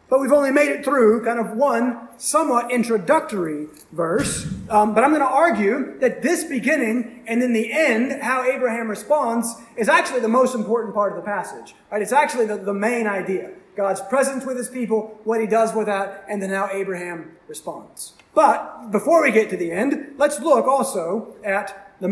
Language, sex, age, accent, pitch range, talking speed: English, male, 30-49, American, 195-250 Hz, 195 wpm